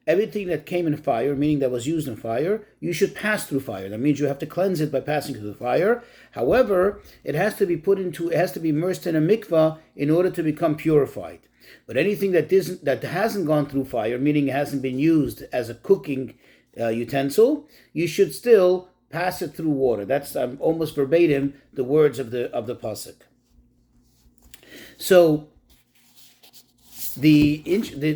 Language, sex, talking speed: English, male, 190 wpm